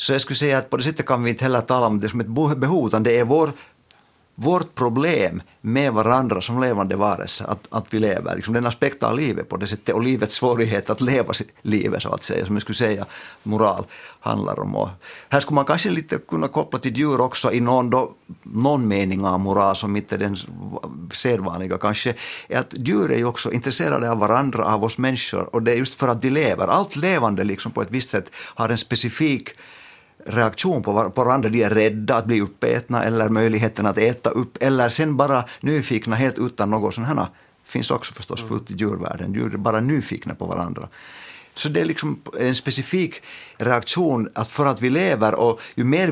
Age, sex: 50-69, male